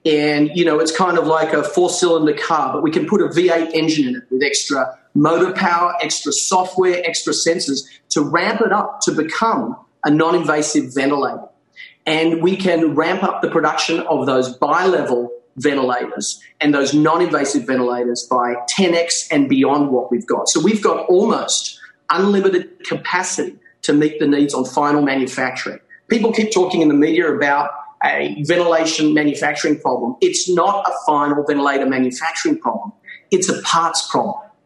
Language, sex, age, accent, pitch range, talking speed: English, male, 40-59, Australian, 145-185 Hz, 160 wpm